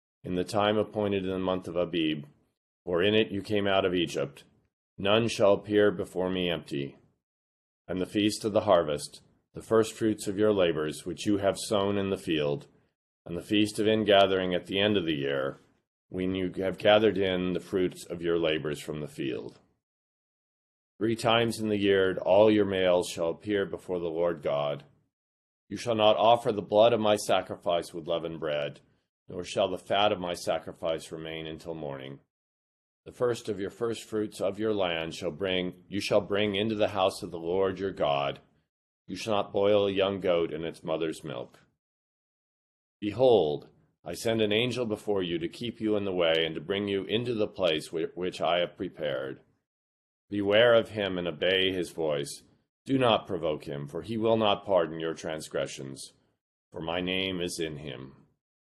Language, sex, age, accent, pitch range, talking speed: English, male, 40-59, American, 80-105 Hz, 185 wpm